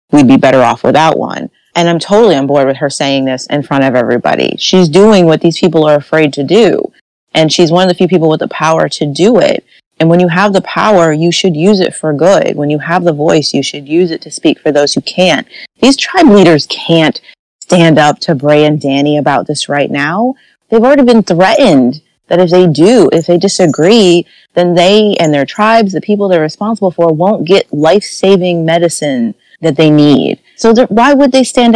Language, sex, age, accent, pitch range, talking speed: English, female, 30-49, American, 150-195 Hz, 220 wpm